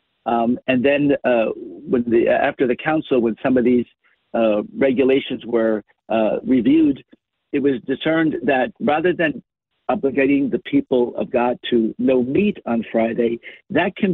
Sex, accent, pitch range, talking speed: male, American, 125-165 Hz, 145 wpm